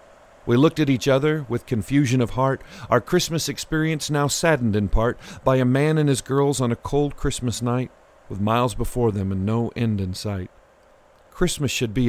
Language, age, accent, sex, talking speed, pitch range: English, 40-59, American, male, 195 wpm, 115-150 Hz